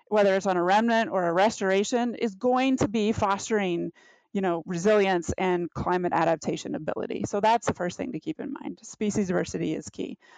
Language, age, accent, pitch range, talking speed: English, 30-49, American, 185-240 Hz, 190 wpm